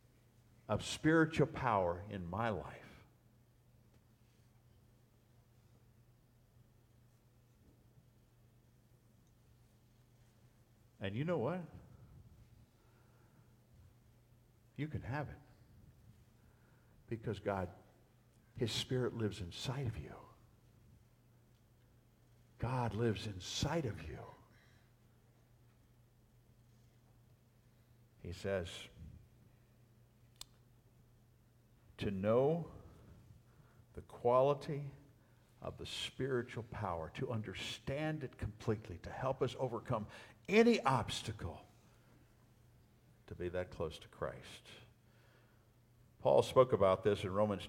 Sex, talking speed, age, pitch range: male, 75 wpm, 50-69, 110-120 Hz